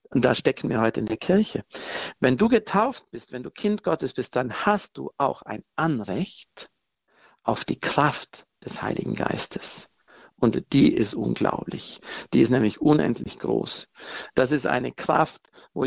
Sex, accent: male, German